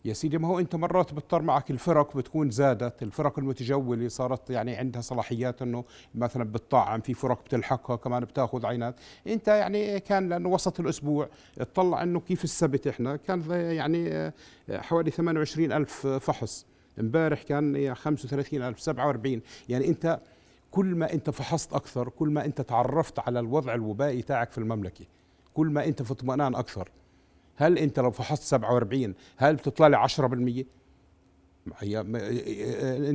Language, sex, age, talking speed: Arabic, male, 50-69, 145 wpm